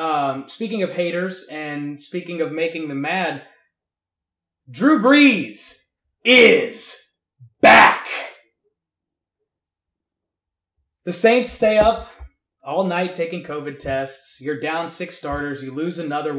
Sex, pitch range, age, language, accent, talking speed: male, 155-220 Hz, 20-39, English, American, 110 wpm